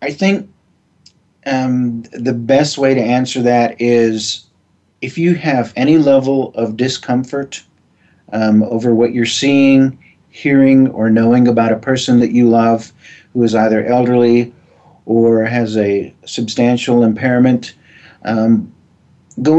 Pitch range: 115-135 Hz